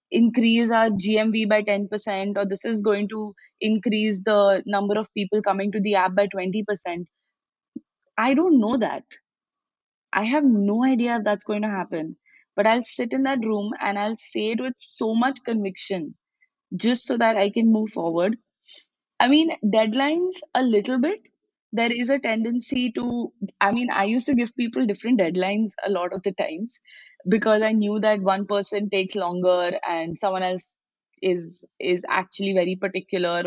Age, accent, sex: 20-39, Indian, female